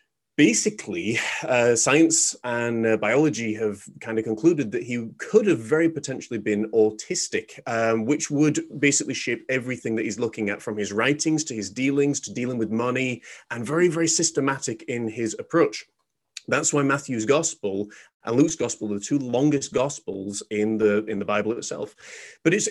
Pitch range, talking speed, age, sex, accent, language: 120-160 Hz, 170 wpm, 30-49, male, British, English